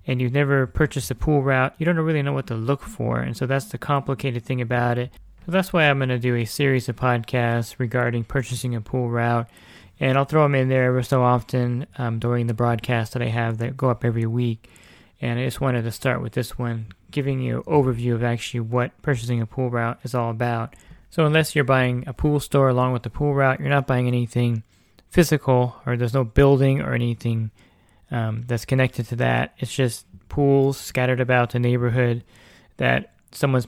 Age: 20-39